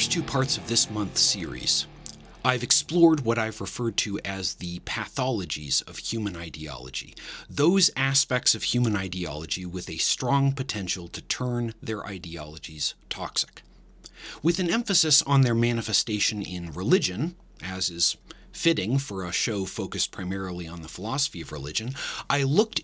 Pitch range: 90-125 Hz